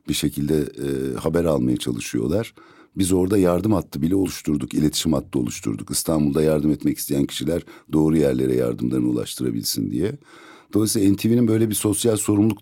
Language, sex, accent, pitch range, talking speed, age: Turkish, male, native, 75-100 Hz, 150 wpm, 60-79